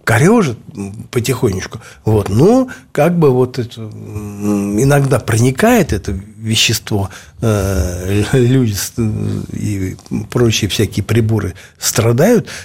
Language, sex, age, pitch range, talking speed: Russian, male, 60-79, 100-135 Hz, 80 wpm